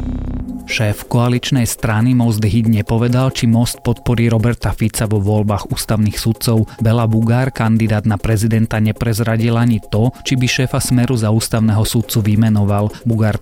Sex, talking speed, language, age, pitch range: male, 145 wpm, Slovak, 30-49, 105-120 Hz